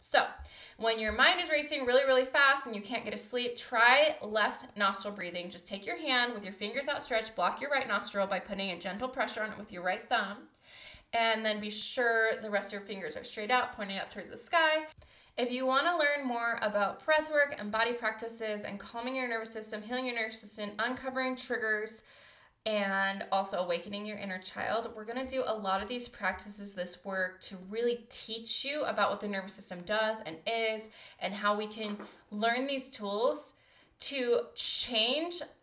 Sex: female